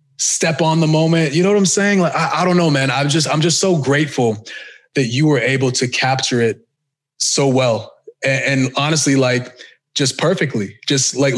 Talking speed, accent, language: 200 wpm, American, English